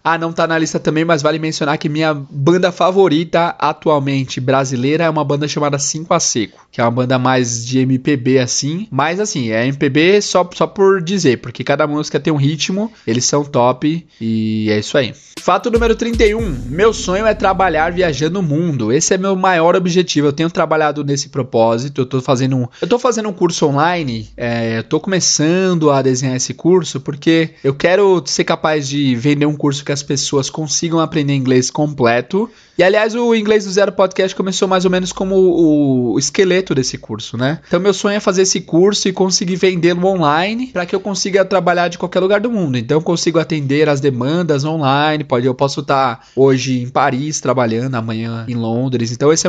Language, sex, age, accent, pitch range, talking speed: Portuguese, male, 20-39, Brazilian, 140-185 Hz, 200 wpm